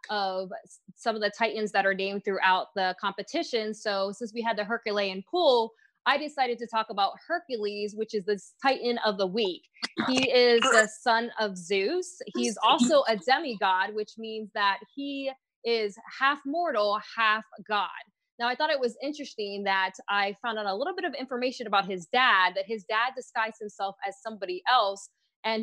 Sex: female